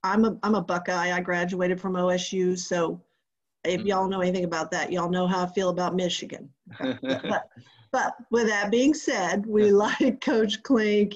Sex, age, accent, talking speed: female, 40-59, American, 175 wpm